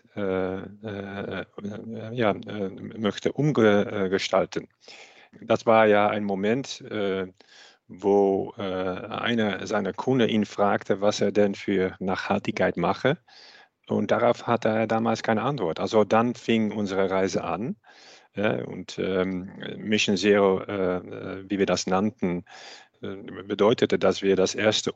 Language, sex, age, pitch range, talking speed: German, male, 40-59, 95-110 Hz, 135 wpm